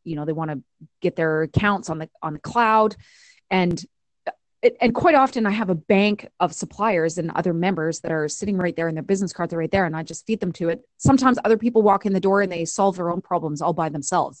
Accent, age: American, 30-49